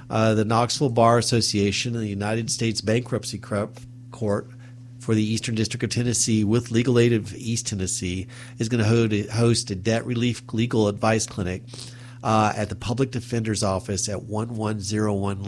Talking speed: 160 wpm